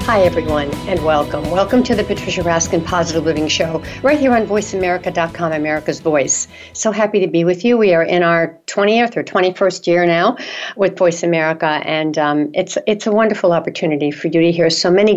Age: 60-79